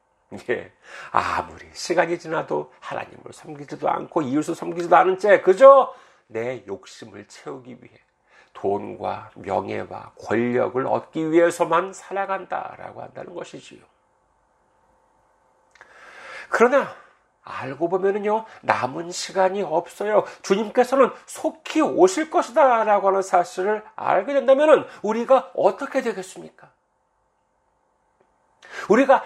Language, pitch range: Korean, 170-245 Hz